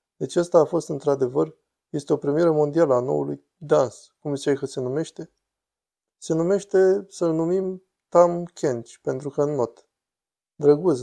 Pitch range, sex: 135-170 Hz, male